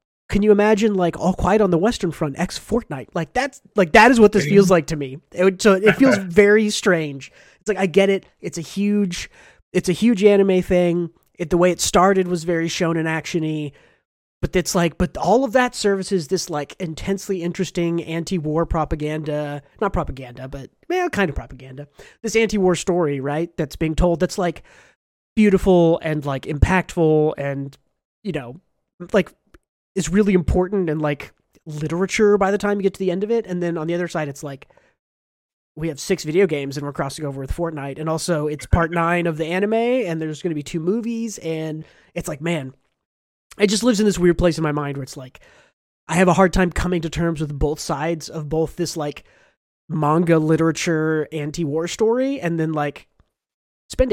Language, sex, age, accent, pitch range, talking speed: English, male, 30-49, American, 155-195 Hz, 200 wpm